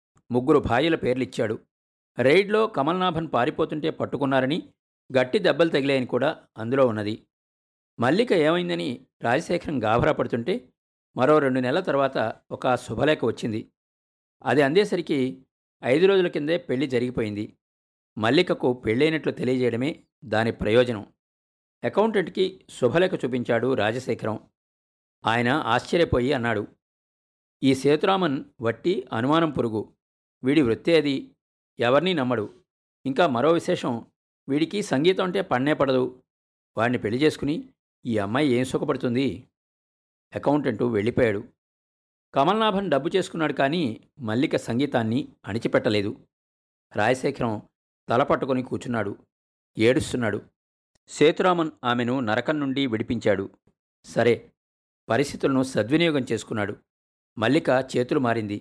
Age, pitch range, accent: 50-69, 115-155 Hz, native